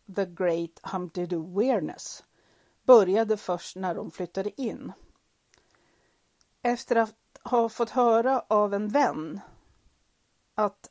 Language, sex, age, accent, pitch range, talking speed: Swedish, female, 40-59, native, 180-240 Hz, 110 wpm